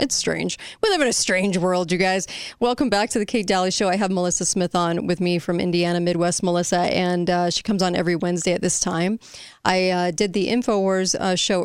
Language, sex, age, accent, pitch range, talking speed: English, female, 30-49, American, 175-200 Hz, 225 wpm